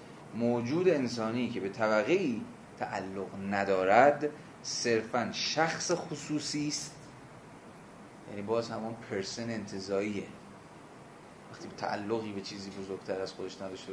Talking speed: 110 wpm